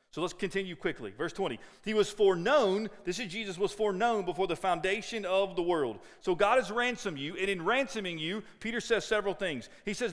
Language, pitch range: English, 175-220 Hz